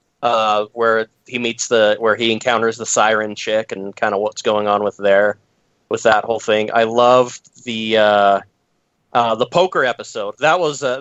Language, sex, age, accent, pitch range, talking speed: English, male, 20-39, American, 105-125 Hz, 180 wpm